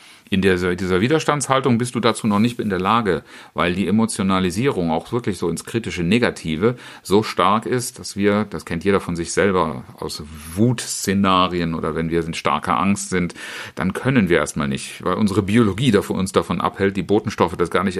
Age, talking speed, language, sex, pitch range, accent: 40-59, 185 wpm, German, male, 100-125 Hz, German